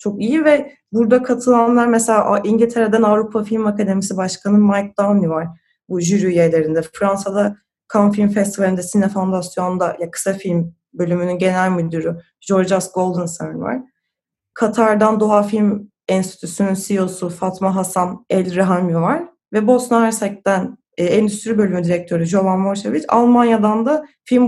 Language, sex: Turkish, female